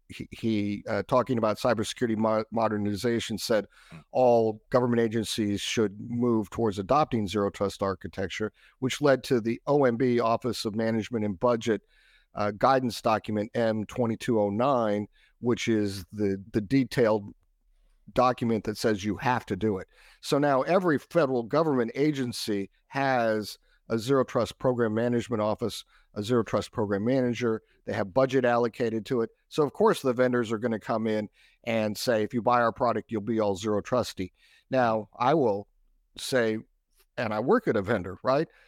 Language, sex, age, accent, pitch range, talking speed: English, male, 50-69, American, 105-125 Hz, 155 wpm